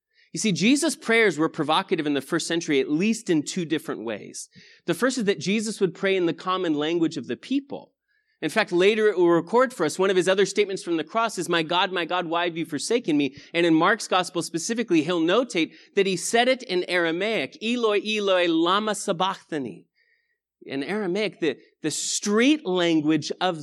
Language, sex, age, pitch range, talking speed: English, male, 30-49, 170-235 Hz, 205 wpm